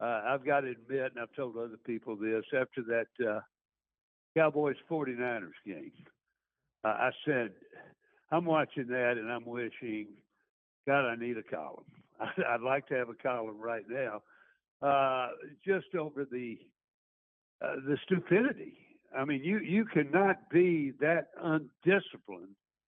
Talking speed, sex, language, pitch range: 140 wpm, male, English, 135-185 Hz